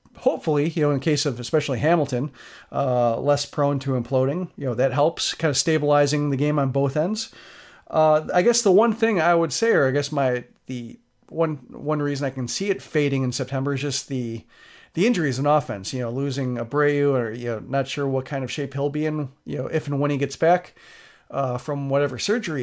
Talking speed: 225 wpm